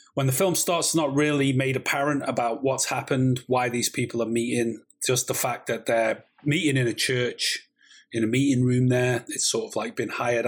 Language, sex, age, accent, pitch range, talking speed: English, male, 30-49, British, 115-140 Hz, 210 wpm